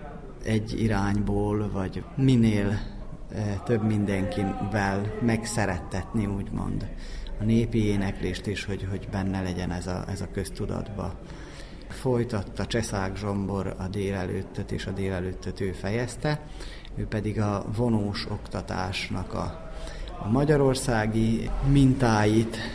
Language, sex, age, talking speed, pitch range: Hungarian, male, 30-49, 105 wpm, 95-115 Hz